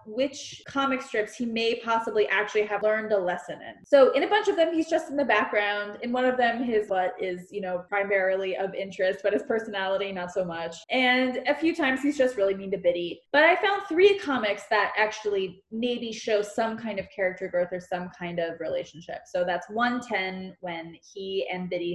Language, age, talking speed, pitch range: English, 20-39, 210 wpm, 195-255 Hz